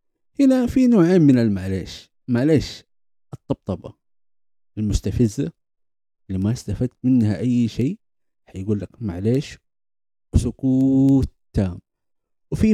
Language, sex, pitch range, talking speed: Arabic, male, 100-160 Hz, 95 wpm